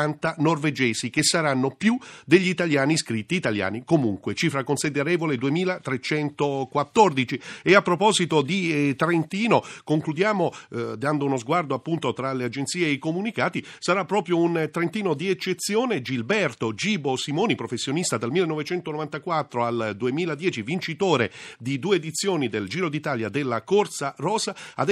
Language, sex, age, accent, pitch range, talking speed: Italian, male, 40-59, native, 130-180 Hz, 130 wpm